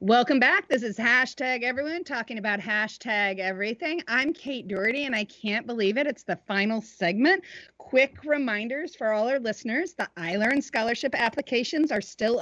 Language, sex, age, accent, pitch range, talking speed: English, female, 40-59, American, 205-275 Hz, 165 wpm